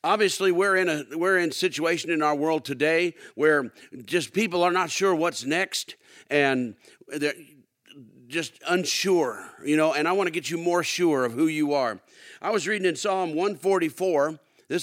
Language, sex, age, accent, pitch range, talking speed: English, male, 50-69, American, 145-185 Hz, 180 wpm